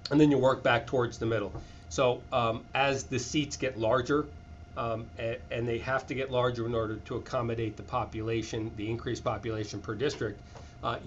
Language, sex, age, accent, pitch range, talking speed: English, male, 40-59, American, 110-135 Hz, 190 wpm